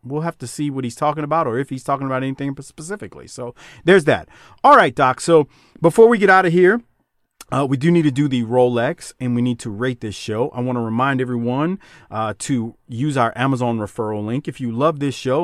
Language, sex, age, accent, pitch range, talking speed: English, male, 40-59, American, 115-155 Hz, 235 wpm